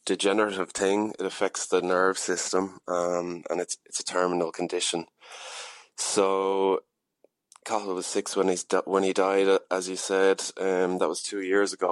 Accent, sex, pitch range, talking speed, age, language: Irish, male, 95-105 Hz, 165 wpm, 20-39, English